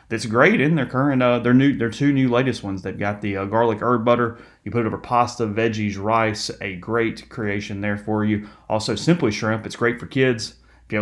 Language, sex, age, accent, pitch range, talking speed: English, male, 30-49, American, 105-125 Hz, 225 wpm